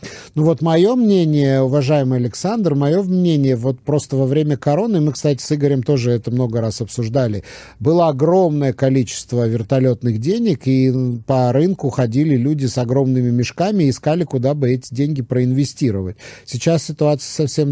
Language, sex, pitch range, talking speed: Russian, male, 115-145 Hz, 150 wpm